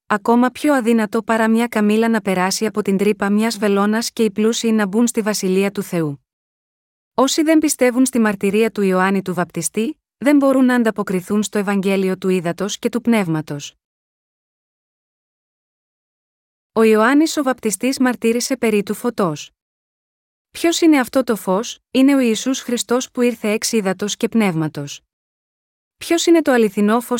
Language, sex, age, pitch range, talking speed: Greek, female, 30-49, 200-250 Hz, 150 wpm